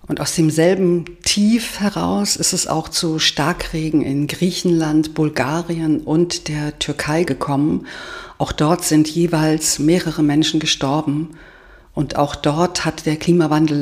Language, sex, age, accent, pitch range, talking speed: German, female, 50-69, German, 145-175 Hz, 130 wpm